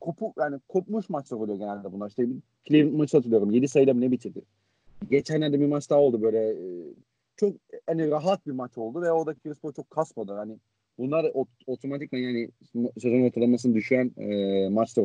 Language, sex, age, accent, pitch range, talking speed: Turkish, male, 40-59, native, 120-175 Hz, 175 wpm